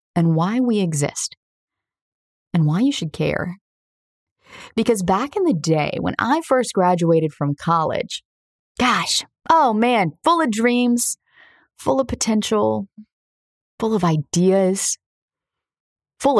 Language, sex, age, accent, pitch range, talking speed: English, female, 30-49, American, 160-235 Hz, 120 wpm